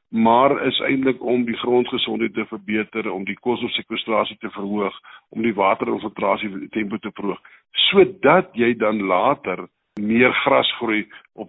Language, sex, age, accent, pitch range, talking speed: Swedish, male, 50-69, Dutch, 105-130 Hz, 145 wpm